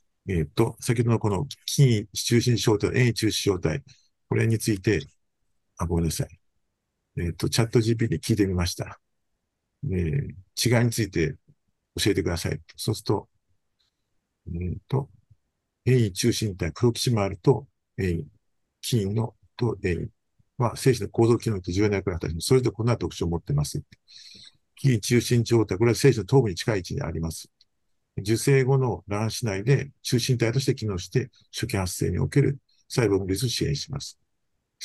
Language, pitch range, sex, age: Japanese, 100-125 Hz, male, 50-69